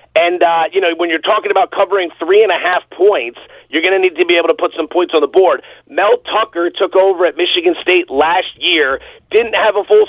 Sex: male